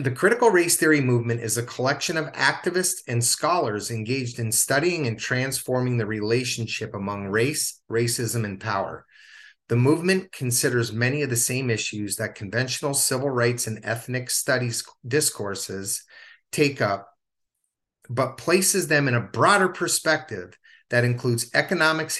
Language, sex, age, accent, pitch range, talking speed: English, male, 30-49, American, 115-160 Hz, 140 wpm